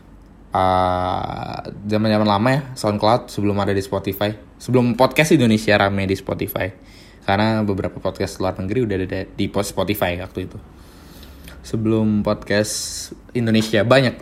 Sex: male